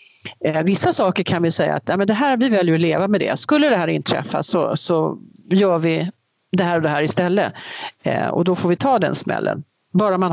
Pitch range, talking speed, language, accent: 165-215 Hz, 230 wpm, Swedish, native